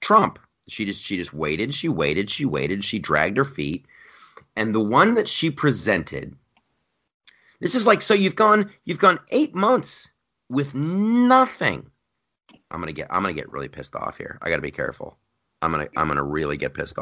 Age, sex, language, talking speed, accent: 30-49, male, English, 205 wpm, American